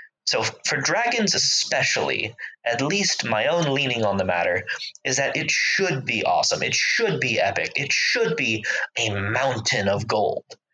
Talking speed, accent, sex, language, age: 160 wpm, American, male, English, 20-39